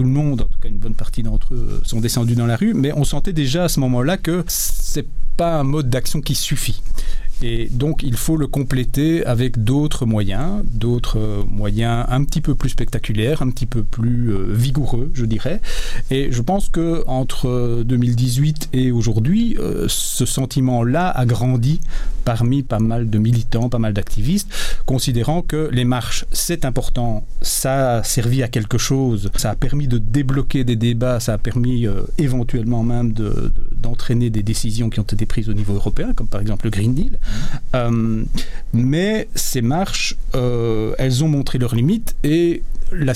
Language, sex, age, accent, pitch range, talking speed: French, male, 40-59, French, 115-140 Hz, 180 wpm